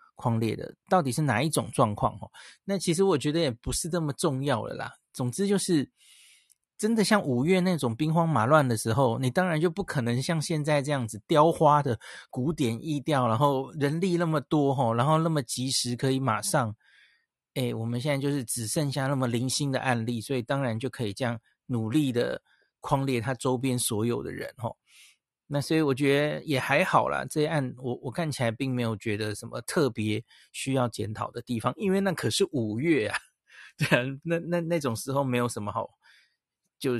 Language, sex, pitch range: Chinese, male, 125-160 Hz